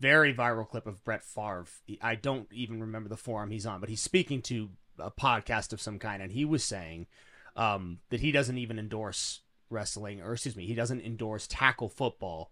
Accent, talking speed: American, 200 wpm